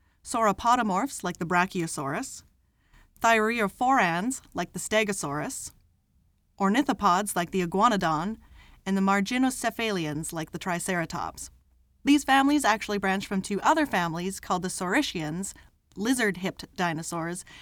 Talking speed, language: 105 wpm, English